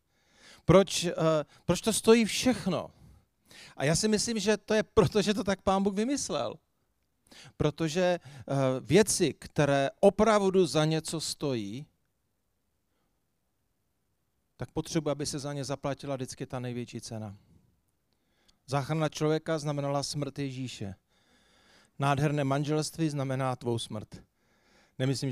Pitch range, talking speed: 130-160 Hz, 115 wpm